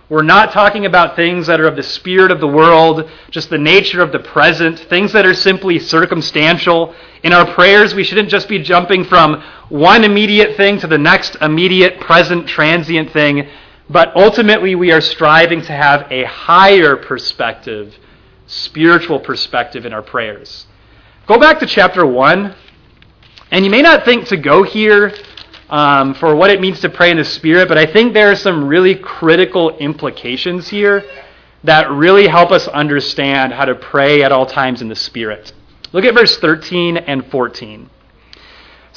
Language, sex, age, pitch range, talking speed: English, male, 30-49, 145-190 Hz, 170 wpm